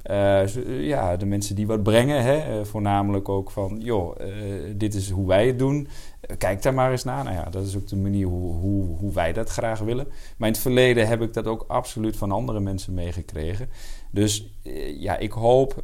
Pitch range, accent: 95-110 Hz, Dutch